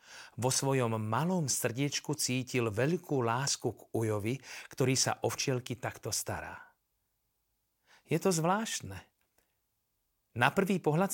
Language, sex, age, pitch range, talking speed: Slovak, male, 40-59, 115-150 Hz, 110 wpm